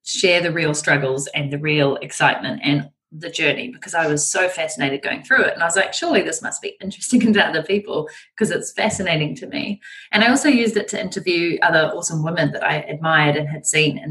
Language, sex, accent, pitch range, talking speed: English, female, Australian, 150-200 Hz, 225 wpm